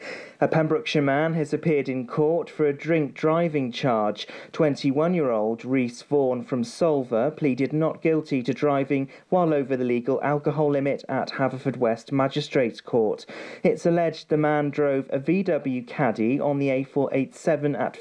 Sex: male